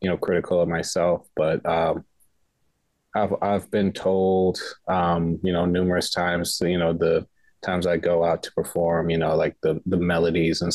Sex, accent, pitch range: male, American, 85-90 Hz